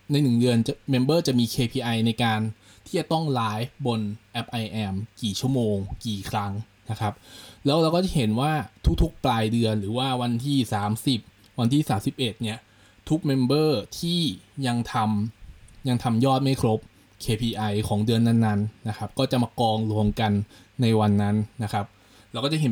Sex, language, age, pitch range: male, Thai, 20-39, 105-130 Hz